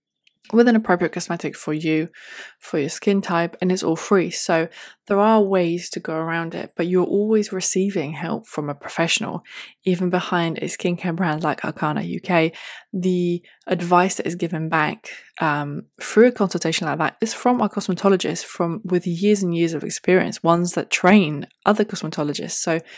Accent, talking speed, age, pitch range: British, 170 wpm, 20-39, 160-195 Hz